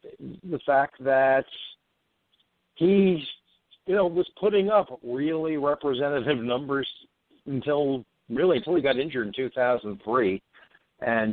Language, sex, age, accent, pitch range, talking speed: English, male, 50-69, American, 115-145 Hz, 120 wpm